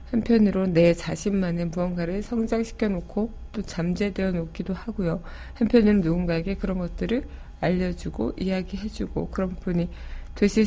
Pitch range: 175-220 Hz